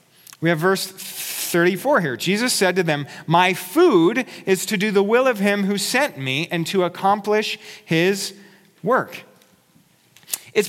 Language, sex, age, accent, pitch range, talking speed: English, male, 40-59, American, 165-220 Hz, 150 wpm